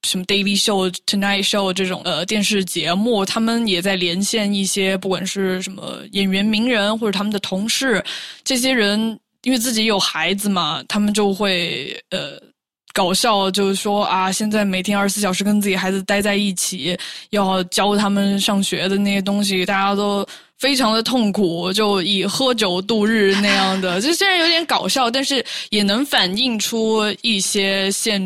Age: 10-29